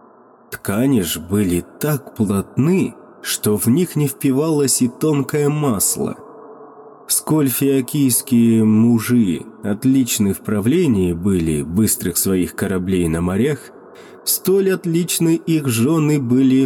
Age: 20-39